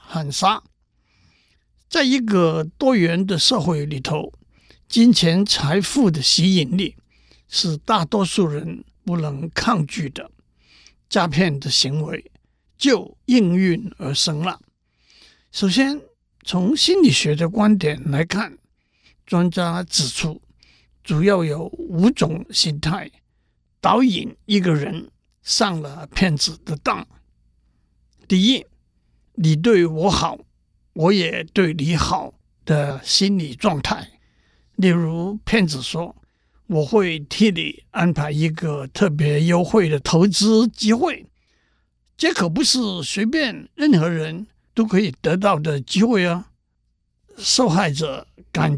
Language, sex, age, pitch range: Chinese, male, 60-79, 150-205 Hz